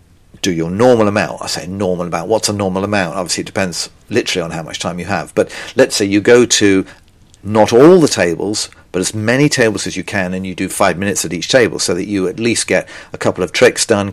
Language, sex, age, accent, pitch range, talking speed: English, male, 50-69, British, 95-115 Hz, 245 wpm